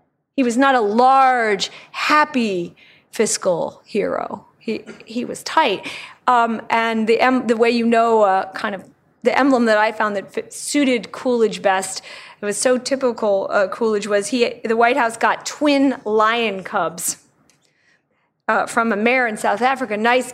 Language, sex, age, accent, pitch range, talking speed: English, female, 30-49, American, 215-250 Hz, 165 wpm